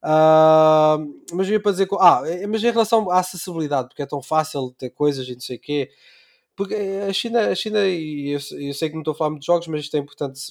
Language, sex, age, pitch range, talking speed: Portuguese, male, 20-39, 140-185 Hz, 235 wpm